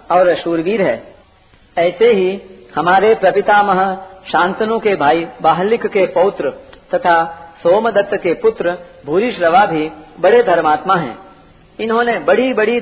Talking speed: 120 wpm